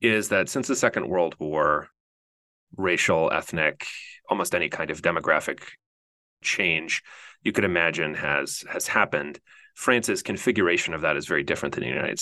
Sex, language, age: male, English, 30-49